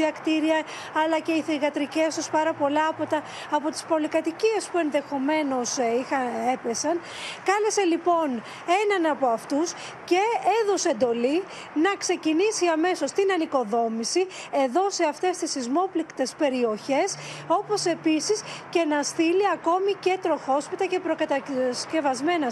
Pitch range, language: 290-365 Hz, Greek